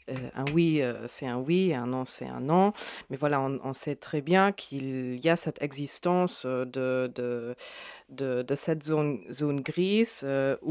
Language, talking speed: French, 185 wpm